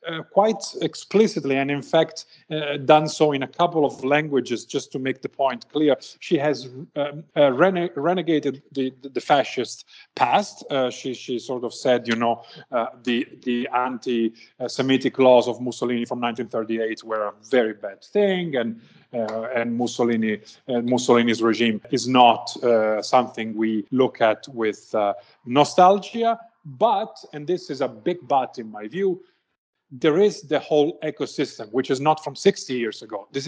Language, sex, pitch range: English, male, 120-150 Hz